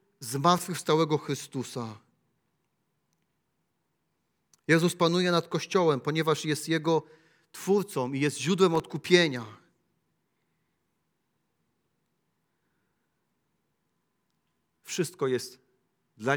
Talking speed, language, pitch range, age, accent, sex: 60 wpm, Polish, 145-195 Hz, 40-59, native, male